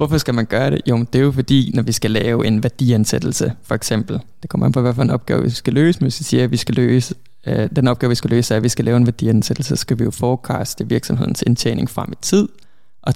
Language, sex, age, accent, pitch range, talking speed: Danish, male, 20-39, native, 115-135 Hz, 280 wpm